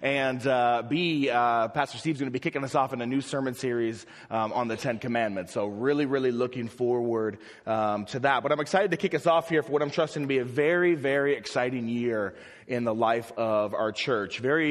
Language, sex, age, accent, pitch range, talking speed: English, male, 30-49, American, 110-140 Hz, 230 wpm